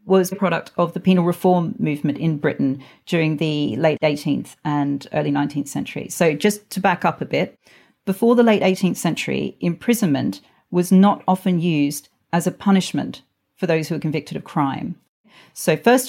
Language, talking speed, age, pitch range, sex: English, 175 wpm, 40-59, 150-185 Hz, female